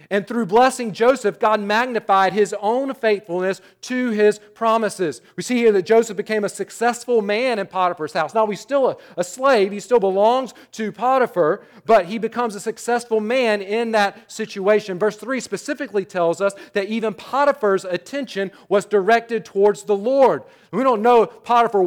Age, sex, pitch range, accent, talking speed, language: 40-59, male, 180-225 Hz, American, 170 wpm, English